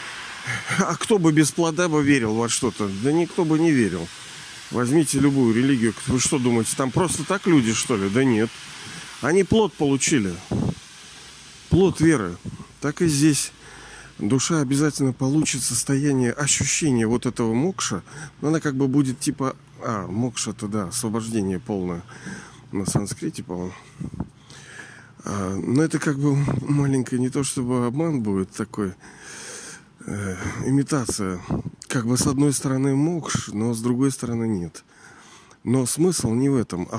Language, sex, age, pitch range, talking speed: Russian, male, 40-59, 110-145 Hz, 140 wpm